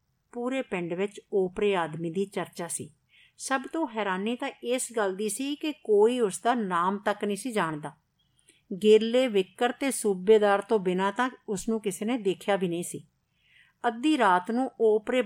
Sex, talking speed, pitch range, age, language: female, 175 wpm, 180-230 Hz, 50-69, Punjabi